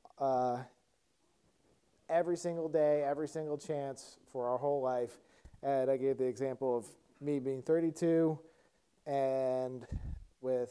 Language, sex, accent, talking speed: English, male, American, 125 wpm